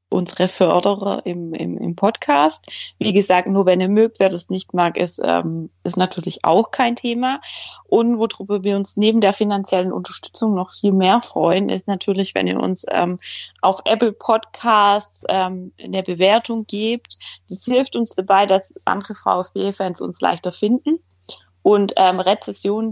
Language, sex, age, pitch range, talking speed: German, female, 30-49, 170-205 Hz, 160 wpm